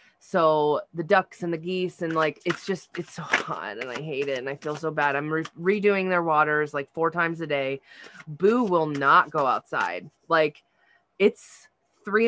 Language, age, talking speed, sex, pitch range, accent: English, 20-39, 195 wpm, female, 150-205 Hz, American